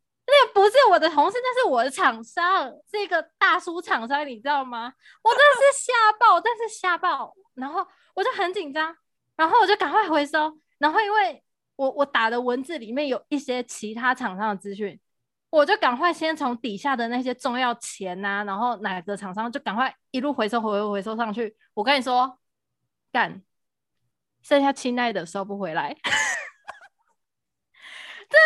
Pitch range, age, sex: 230-345 Hz, 20-39, female